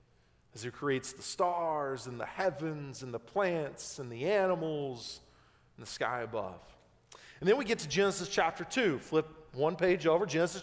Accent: American